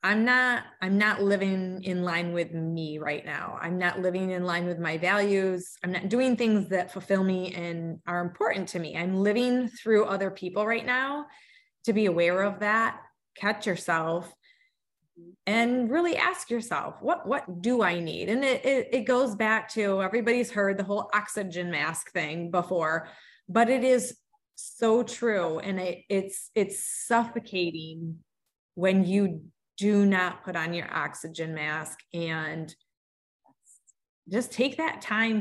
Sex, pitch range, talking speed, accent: female, 180-235 Hz, 160 wpm, American